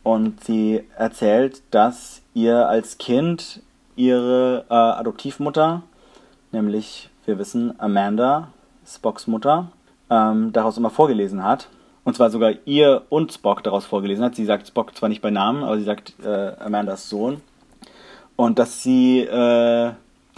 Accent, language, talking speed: German, German, 140 wpm